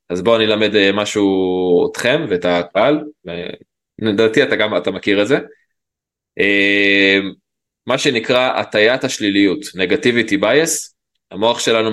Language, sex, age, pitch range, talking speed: Hebrew, male, 20-39, 100-120 Hz, 110 wpm